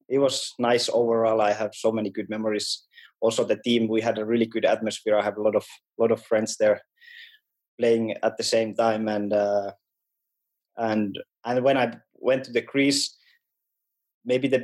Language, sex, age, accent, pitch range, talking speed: English, male, 20-39, Finnish, 110-130 Hz, 185 wpm